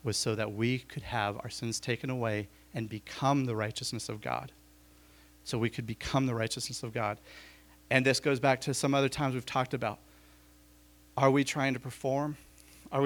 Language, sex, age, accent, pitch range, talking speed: English, male, 40-59, American, 110-155 Hz, 190 wpm